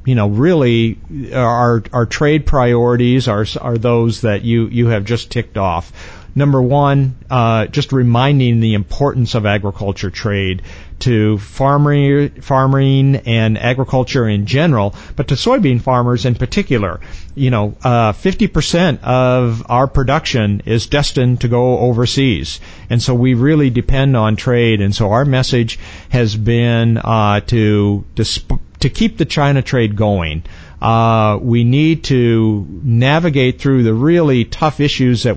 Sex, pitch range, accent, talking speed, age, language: male, 110-135 Hz, American, 145 wpm, 50-69, English